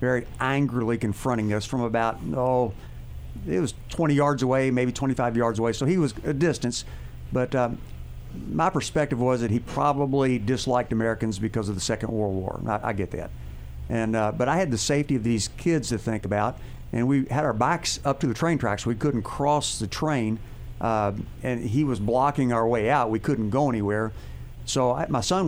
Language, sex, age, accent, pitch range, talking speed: English, male, 50-69, American, 110-135 Hz, 200 wpm